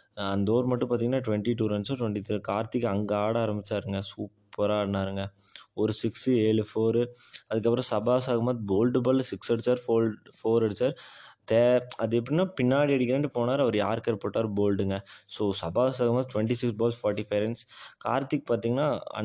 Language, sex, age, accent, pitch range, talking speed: Tamil, male, 20-39, native, 105-120 Hz, 155 wpm